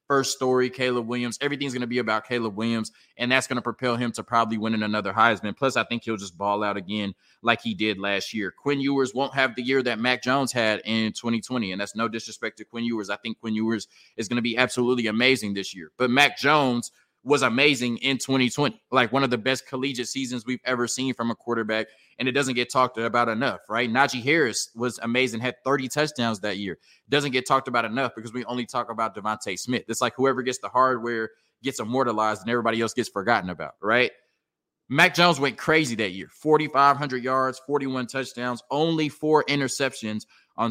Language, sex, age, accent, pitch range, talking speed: English, male, 20-39, American, 115-135 Hz, 215 wpm